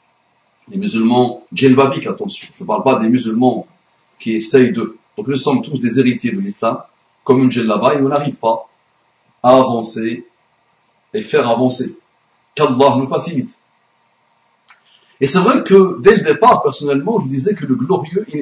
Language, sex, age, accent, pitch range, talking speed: French, male, 60-79, French, 135-205 Hz, 155 wpm